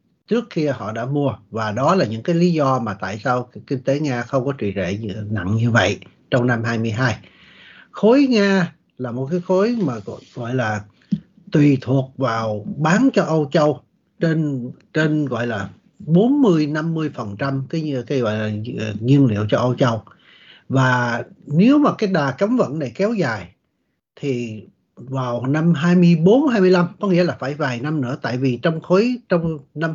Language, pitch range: Vietnamese, 120-175 Hz